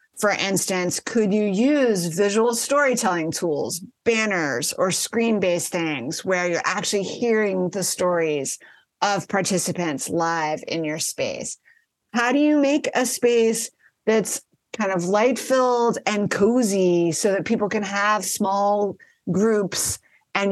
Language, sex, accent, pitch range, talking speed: English, female, American, 180-240 Hz, 130 wpm